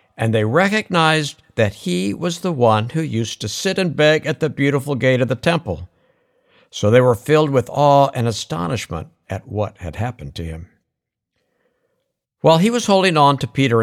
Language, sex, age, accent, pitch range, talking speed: English, male, 60-79, American, 110-160 Hz, 180 wpm